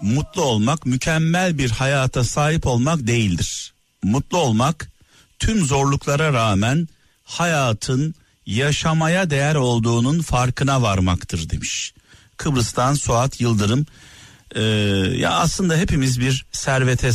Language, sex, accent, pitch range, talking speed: Turkish, male, native, 115-145 Hz, 100 wpm